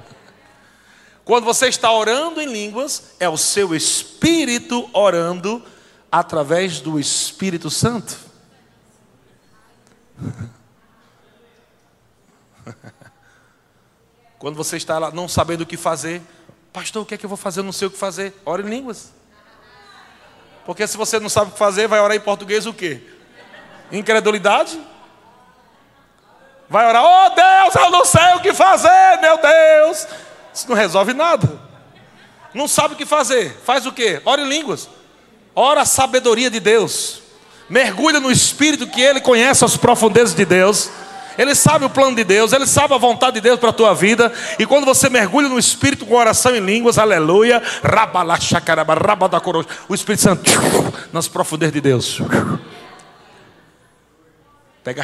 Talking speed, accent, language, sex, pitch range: 145 wpm, Brazilian, Portuguese, male, 175-260 Hz